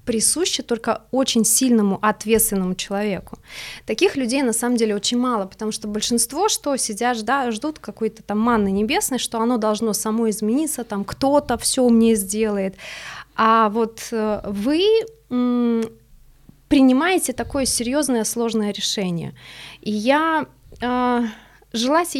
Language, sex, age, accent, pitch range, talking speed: Russian, female, 20-39, native, 210-255 Hz, 120 wpm